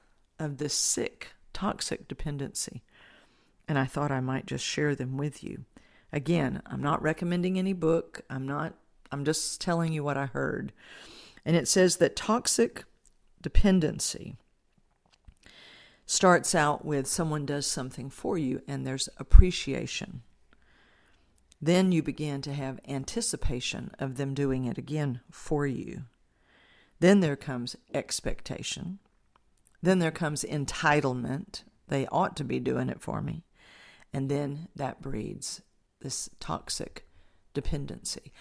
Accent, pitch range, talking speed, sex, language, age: American, 135-170 Hz, 130 wpm, female, English, 50-69